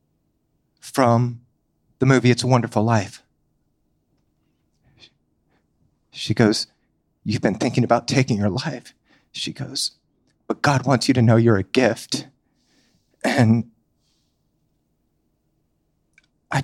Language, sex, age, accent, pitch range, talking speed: English, male, 30-49, American, 115-140 Hz, 105 wpm